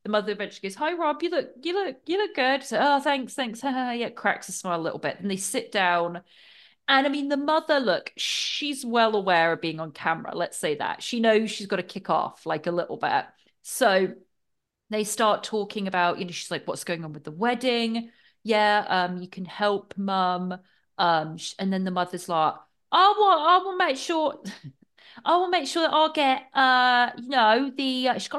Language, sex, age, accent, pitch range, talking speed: English, female, 30-49, British, 190-265 Hz, 220 wpm